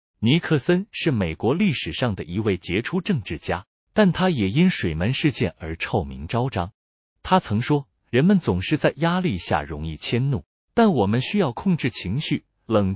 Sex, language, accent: male, Chinese, native